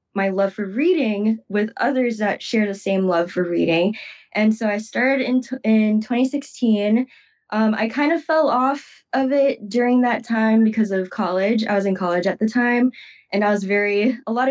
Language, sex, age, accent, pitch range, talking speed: English, female, 10-29, American, 200-240 Hz, 200 wpm